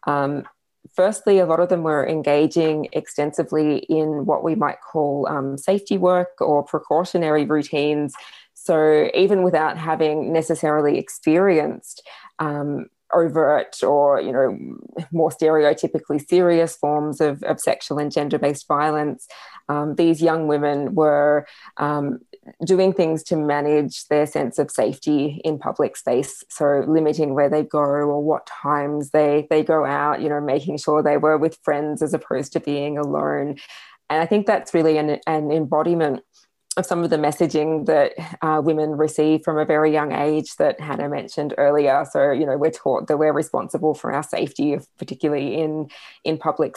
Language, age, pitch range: English, 20-39, 145-160 Hz